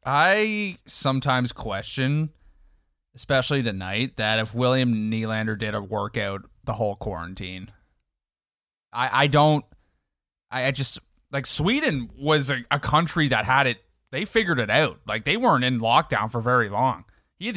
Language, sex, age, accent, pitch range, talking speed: English, male, 20-39, American, 110-155 Hz, 150 wpm